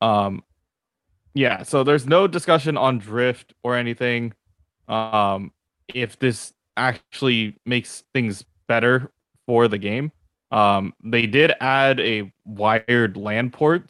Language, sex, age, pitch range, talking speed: English, male, 20-39, 105-130 Hz, 120 wpm